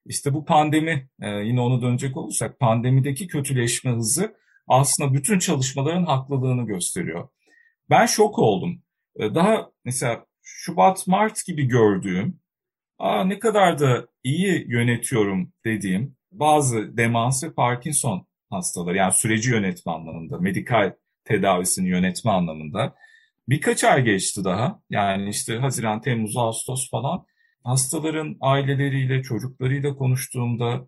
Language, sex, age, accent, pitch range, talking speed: Turkish, male, 50-69, native, 115-180 Hz, 115 wpm